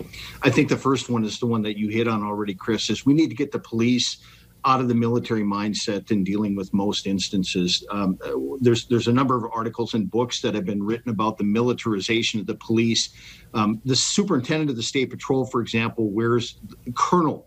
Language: English